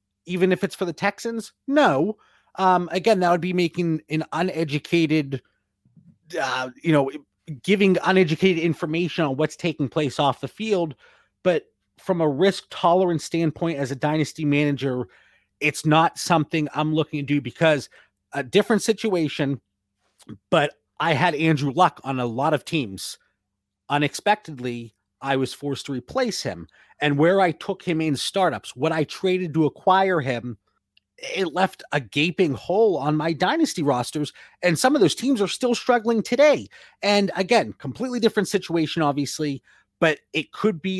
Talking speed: 155 wpm